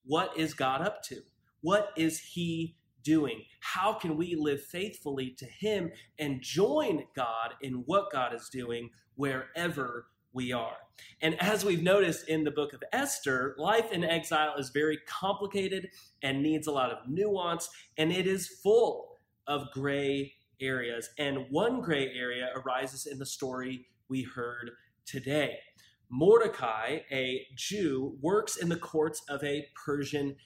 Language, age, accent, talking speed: English, 30-49, American, 150 wpm